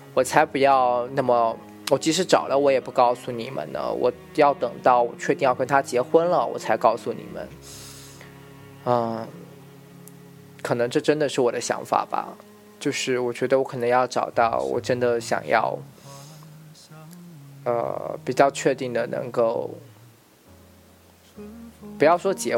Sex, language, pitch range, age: male, Chinese, 125-175 Hz, 20-39